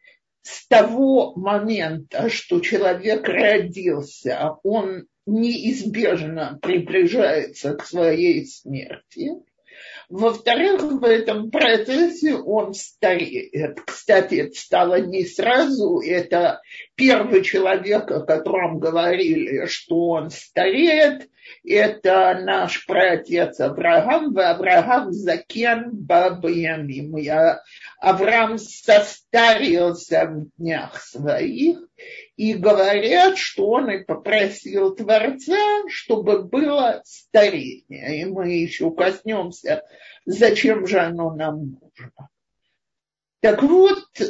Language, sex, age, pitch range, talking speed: Russian, male, 50-69, 180-300 Hz, 90 wpm